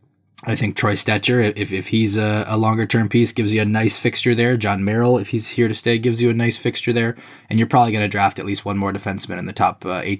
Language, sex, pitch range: English, male, 100-115 Hz